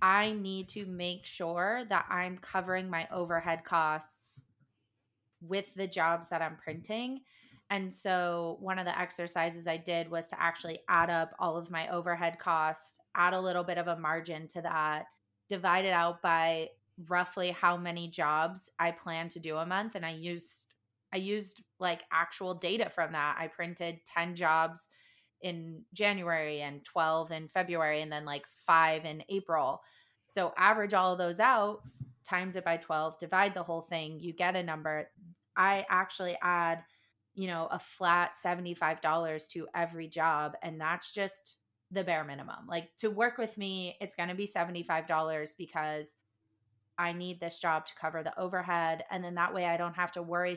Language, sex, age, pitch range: English, female, 20-39, 160-180 Hz